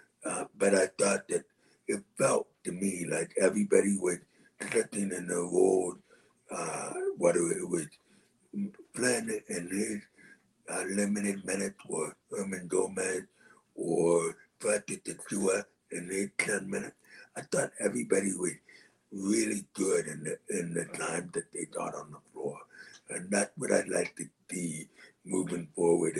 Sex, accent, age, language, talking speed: male, American, 60-79, English, 145 wpm